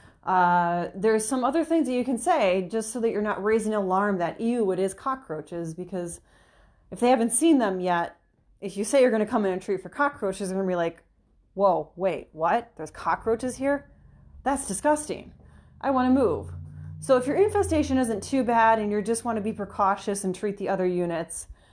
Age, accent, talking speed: 30-49, American, 205 wpm